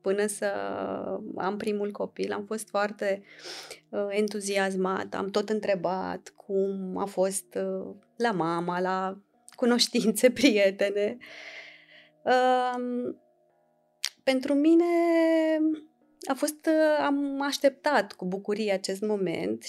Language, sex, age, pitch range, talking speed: Romanian, female, 20-39, 205-255 Hz, 85 wpm